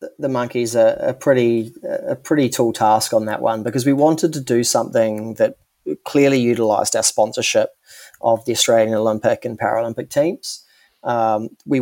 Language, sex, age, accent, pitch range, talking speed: English, male, 30-49, Australian, 110-125 Hz, 165 wpm